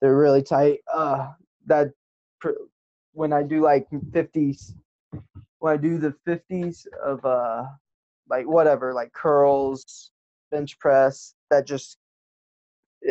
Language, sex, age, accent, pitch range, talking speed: English, male, 10-29, American, 120-145 Hz, 130 wpm